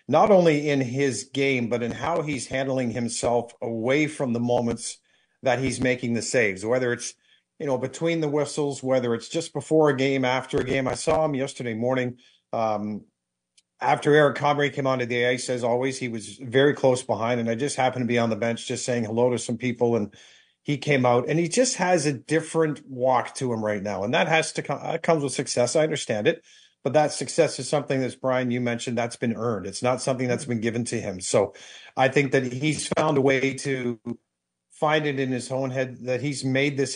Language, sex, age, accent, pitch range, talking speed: English, male, 50-69, American, 120-140 Hz, 220 wpm